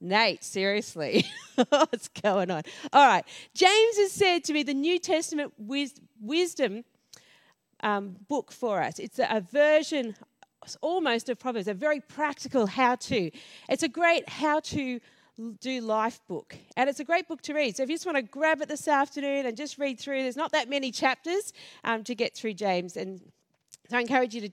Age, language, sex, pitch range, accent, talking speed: 40-59, English, female, 220-300 Hz, Australian, 185 wpm